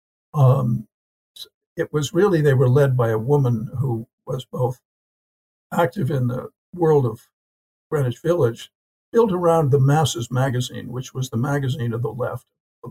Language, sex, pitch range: English, male, 125-150 Hz